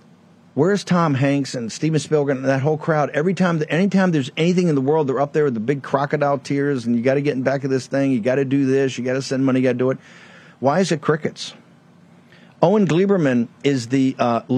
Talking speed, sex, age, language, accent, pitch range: 250 wpm, male, 50-69, English, American, 120-155 Hz